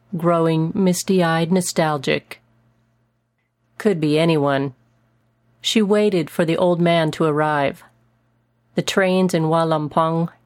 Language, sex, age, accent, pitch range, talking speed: English, female, 40-59, American, 120-180 Hz, 110 wpm